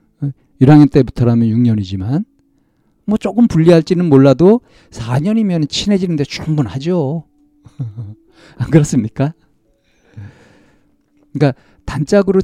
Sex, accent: male, native